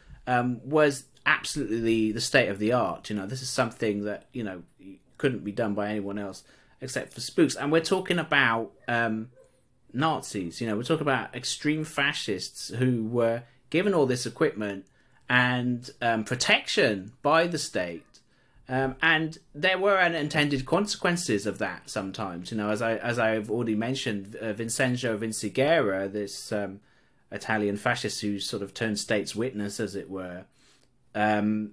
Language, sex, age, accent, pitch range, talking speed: English, male, 30-49, British, 105-130 Hz, 160 wpm